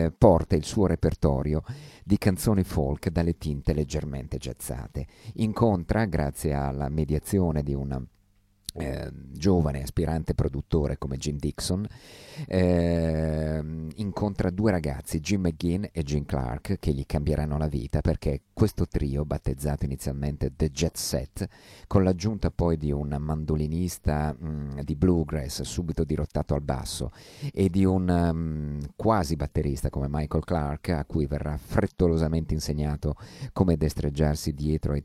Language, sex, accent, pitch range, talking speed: Italian, male, native, 75-90 Hz, 130 wpm